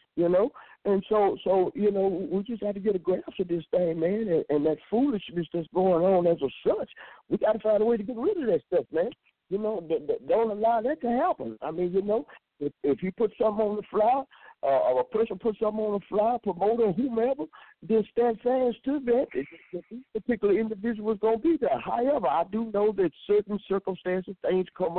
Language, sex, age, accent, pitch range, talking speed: English, male, 60-79, American, 175-235 Hz, 235 wpm